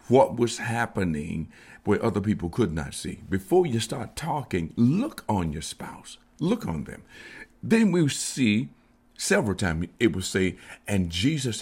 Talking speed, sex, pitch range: 155 wpm, male, 90-120 Hz